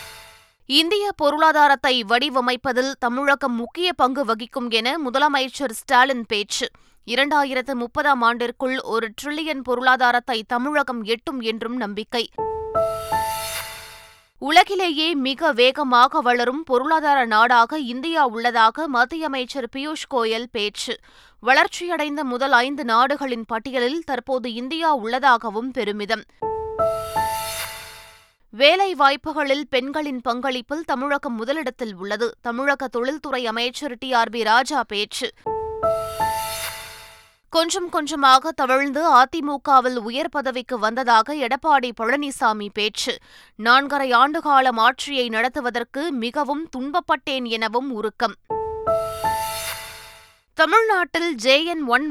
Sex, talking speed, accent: female, 90 wpm, native